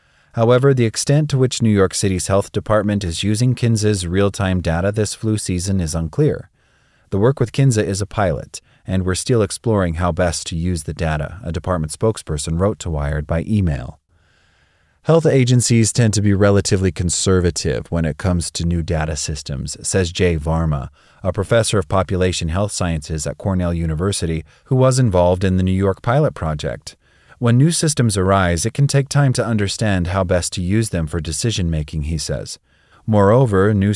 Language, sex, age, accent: English, male, 30-49, American